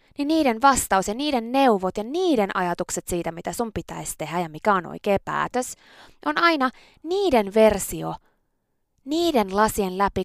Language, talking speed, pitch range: Finnish, 150 wpm, 175-280 Hz